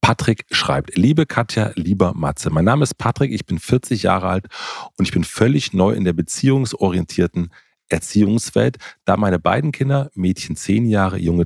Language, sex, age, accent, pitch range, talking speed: German, male, 40-59, German, 90-120 Hz, 170 wpm